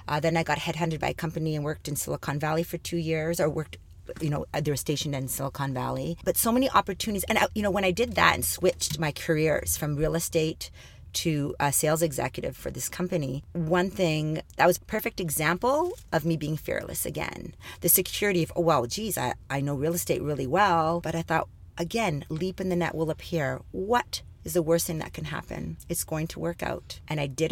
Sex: female